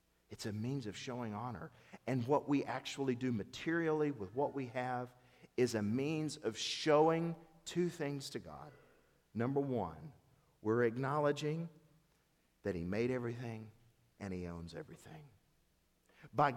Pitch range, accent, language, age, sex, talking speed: 110-165 Hz, American, English, 50-69, male, 140 wpm